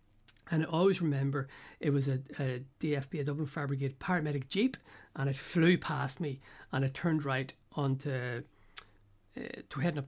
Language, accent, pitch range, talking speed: English, Irish, 130-155 Hz, 165 wpm